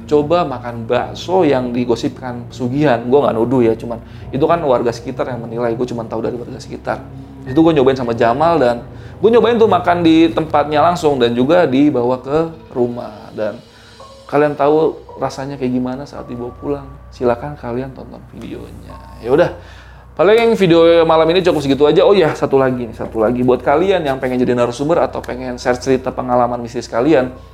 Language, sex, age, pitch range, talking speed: Indonesian, male, 30-49, 120-160 Hz, 180 wpm